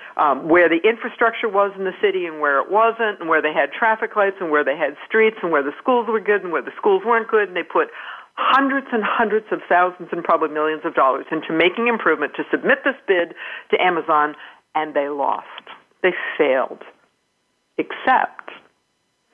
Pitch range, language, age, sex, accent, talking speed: 170-250 Hz, English, 60-79, female, American, 195 wpm